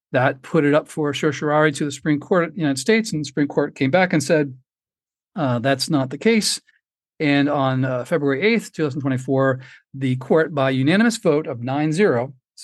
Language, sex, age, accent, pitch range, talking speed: English, male, 50-69, American, 135-160 Hz, 195 wpm